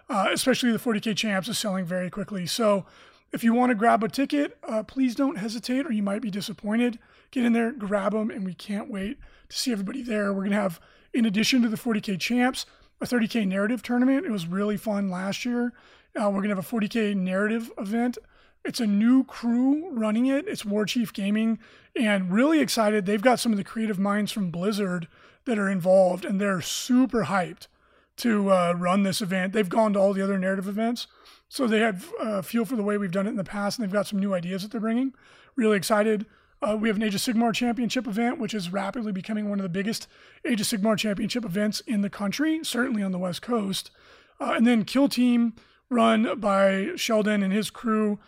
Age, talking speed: 30-49, 215 wpm